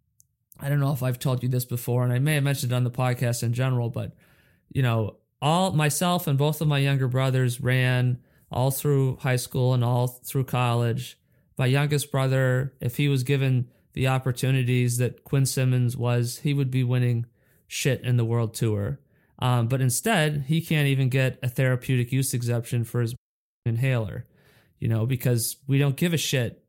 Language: English